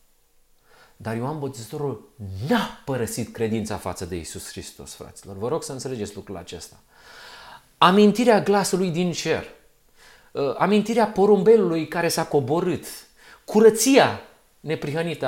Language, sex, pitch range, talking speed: Romanian, male, 125-190 Hz, 110 wpm